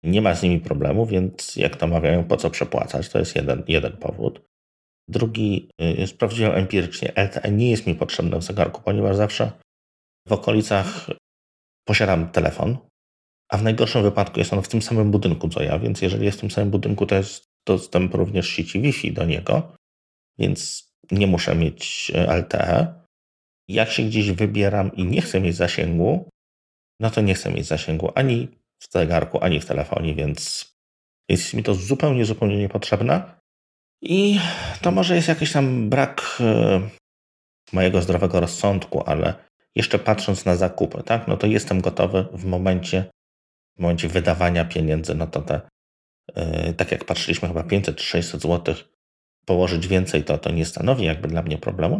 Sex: male